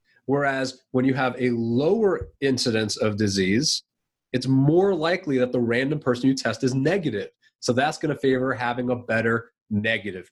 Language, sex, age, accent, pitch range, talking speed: English, male, 30-49, American, 120-155 Hz, 165 wpm